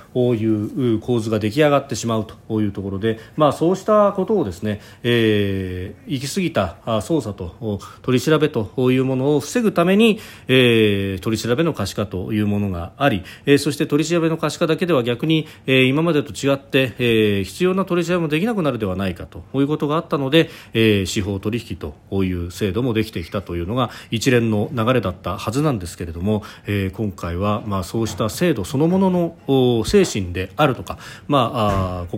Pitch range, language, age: 100-140 Hz, Japanese, 40-59